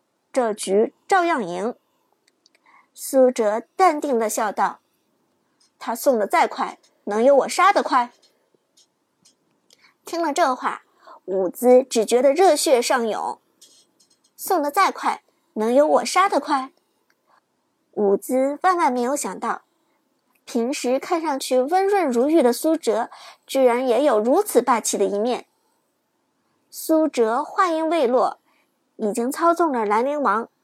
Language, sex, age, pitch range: Chinese, male, 50-69, 250-330 Hz